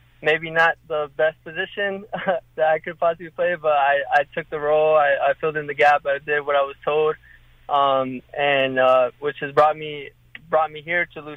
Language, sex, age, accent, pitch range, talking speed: English, male, 20-39, American, 140-150 Hz, 210 wpm